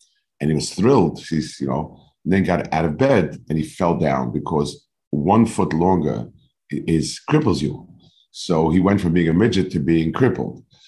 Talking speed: 190 wpm